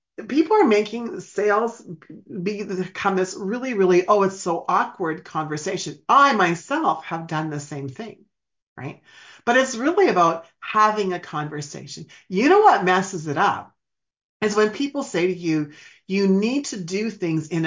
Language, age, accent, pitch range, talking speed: English, 40-59, American, 155-205 Hz, 155 wpm